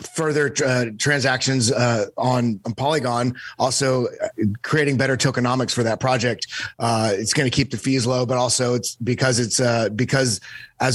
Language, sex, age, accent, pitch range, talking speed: English, male, 30-49, American, 115-130 Hz, 165 wpm